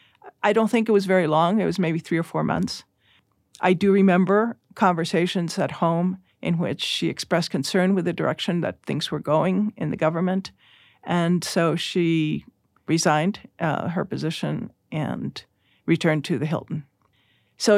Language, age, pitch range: English, 50-69, 165-200 Hz